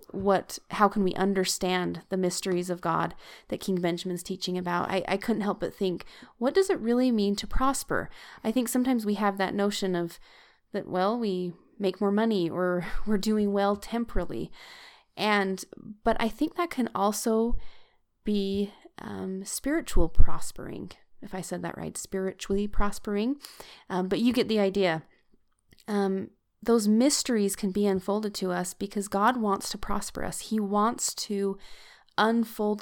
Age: 20-39